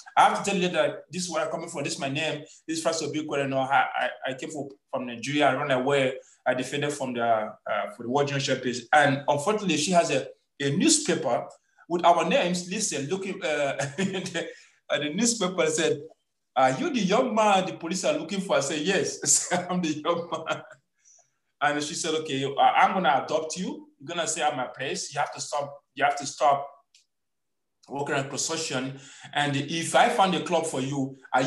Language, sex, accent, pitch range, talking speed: English, male, Nigerian, 140-185 Hz, 215 wpm